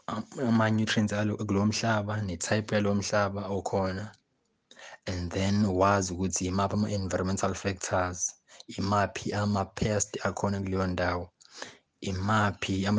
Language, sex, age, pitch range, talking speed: English, male, 20-39, 95-105 Hz, 135 wpm